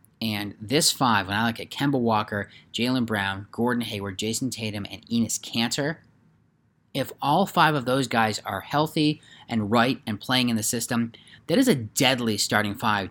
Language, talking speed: English, 180 wpm